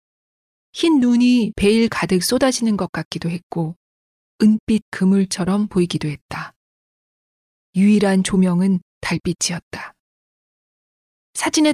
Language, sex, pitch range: Korean, female, 180-250 Hz